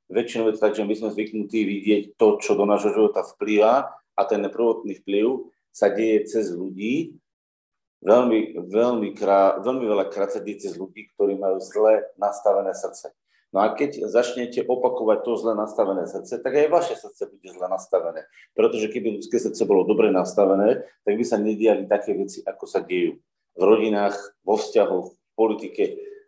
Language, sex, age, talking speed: Slovak, male, 40-59, 175 wpm